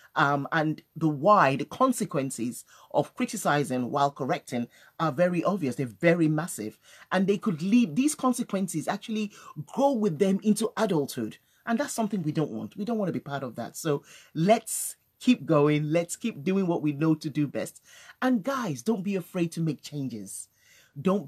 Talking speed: 180 wpm